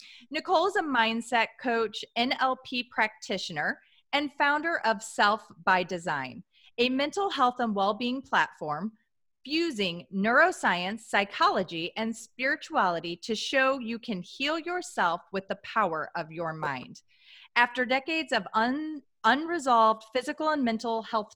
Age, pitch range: 30-49, 190-260 Hz